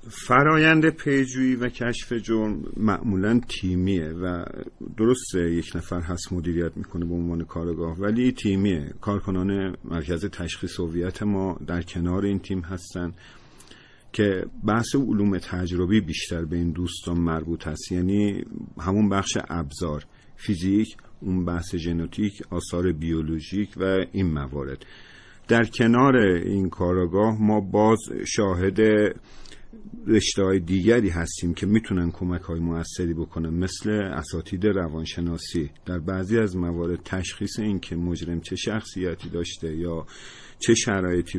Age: 50-69